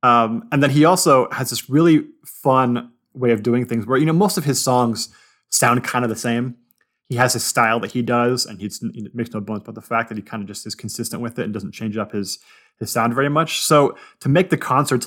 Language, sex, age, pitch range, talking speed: English, male, 20-39, 115-135 Hz, 255 wpm